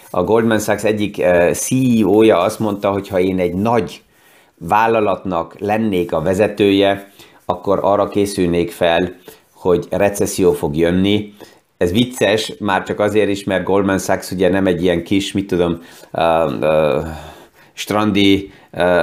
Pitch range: 90-105 Hz